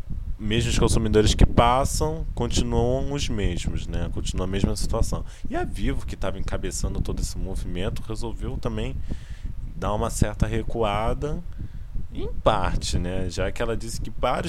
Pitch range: 90-115 Hz